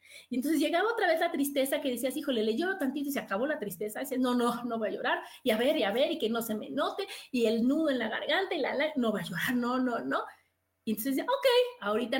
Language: Spanish